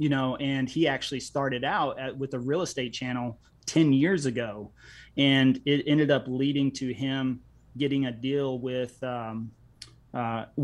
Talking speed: 165 wpm